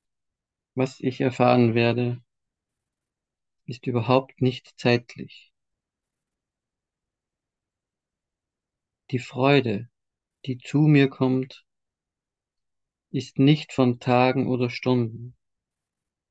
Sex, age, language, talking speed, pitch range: male, 50-69, German, 75 wpm, 115-130 Hz